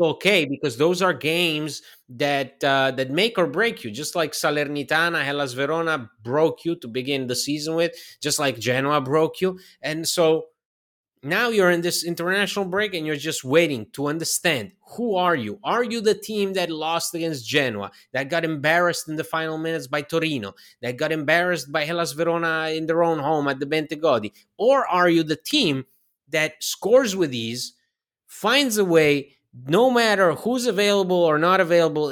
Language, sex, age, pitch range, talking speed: English, male, 30-49, 145-185 Hz, 180 wpm